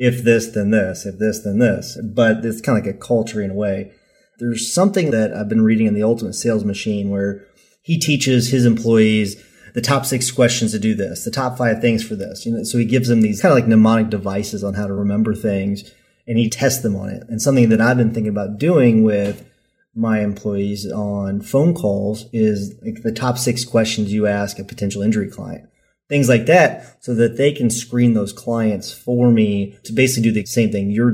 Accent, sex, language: American, male, English